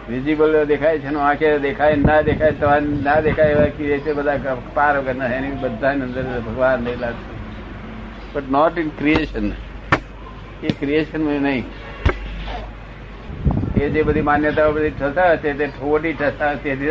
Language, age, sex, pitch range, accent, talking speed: Gujarati, 60-79, male, 125-155 Hz, native, 65 wpm